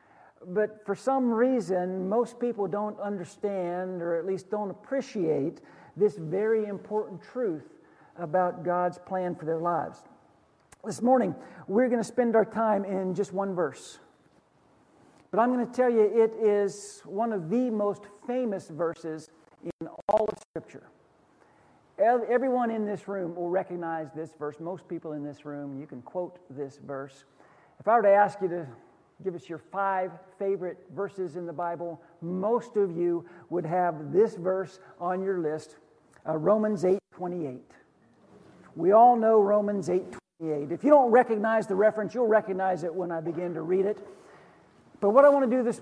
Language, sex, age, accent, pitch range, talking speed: English, male, 50-69, American, 170-215 Hz, 170 wpm